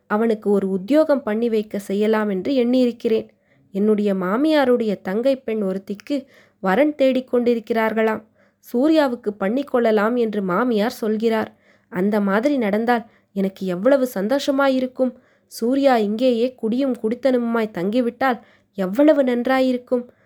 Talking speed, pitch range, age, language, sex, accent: 100 wpm, 210-260 Hz, 20-39, Tamil, female, native